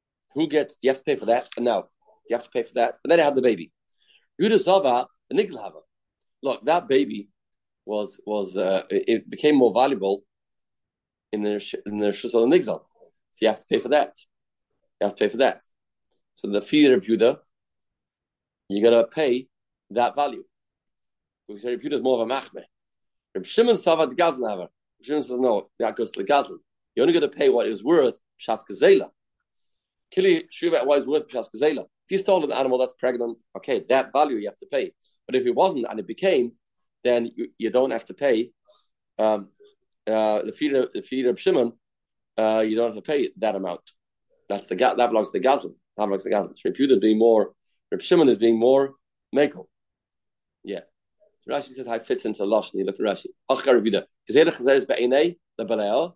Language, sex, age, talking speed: English, male, 40-59, 185 wpm